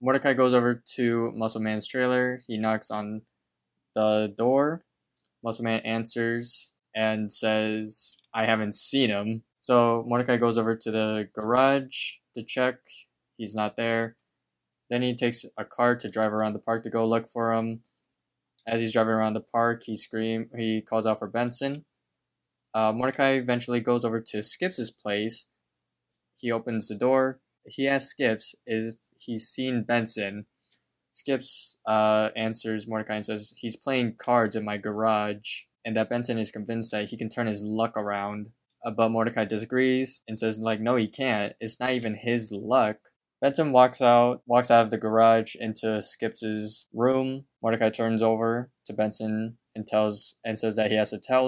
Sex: male